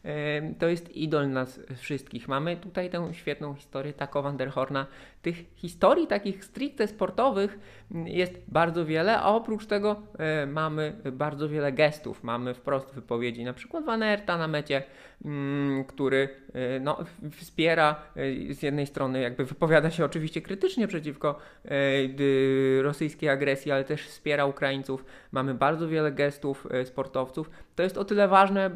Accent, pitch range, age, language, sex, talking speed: native, 135-165 Hz, 20-39, Polish, male, 130 wpm